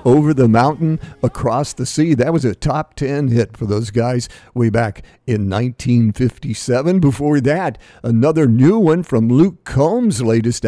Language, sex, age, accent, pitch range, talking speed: English, male, 50-69, American, 115-140 Hz, 155 wpm